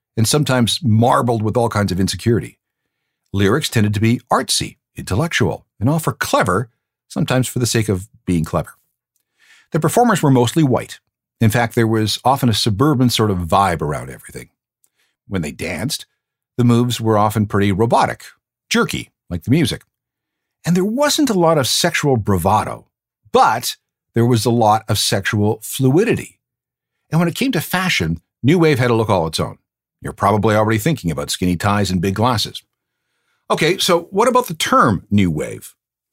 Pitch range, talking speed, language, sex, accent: 100-135 Hz, 170 wpm, English, male, American